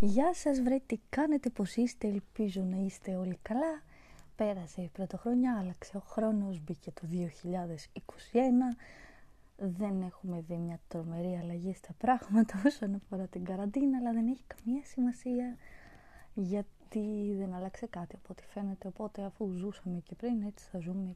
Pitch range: 185-225 Hz